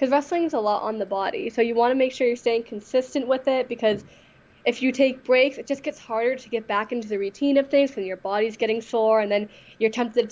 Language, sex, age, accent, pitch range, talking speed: English, female, 10-29, American, 210-255 Hz, 265 wpm